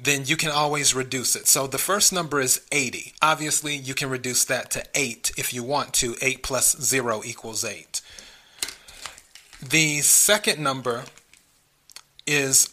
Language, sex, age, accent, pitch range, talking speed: English, male, 30-49, American, 130-155 Hz, 150 wpm